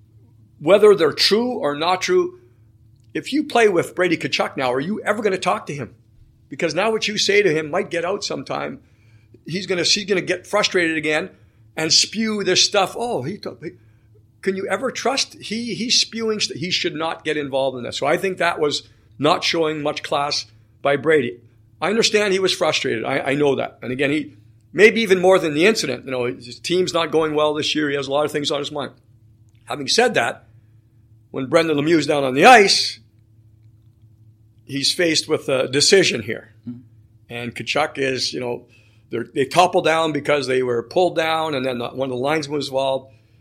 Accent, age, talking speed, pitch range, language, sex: American, 50-69, 200 wpm, 115-165 Hz, English, male